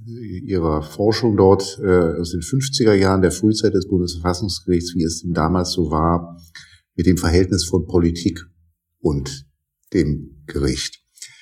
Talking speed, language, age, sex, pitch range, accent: 125 wpm, German, 50-69, male, 90-120 Hz, German